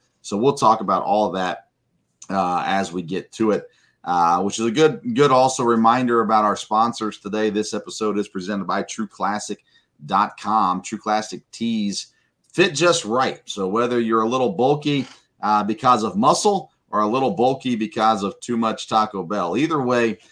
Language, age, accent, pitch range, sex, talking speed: English, 30-49, American, 100-130 Hz, male, 175 wpm